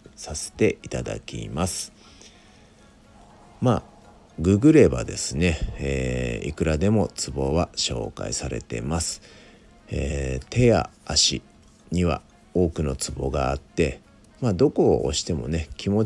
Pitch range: 70-100 Hz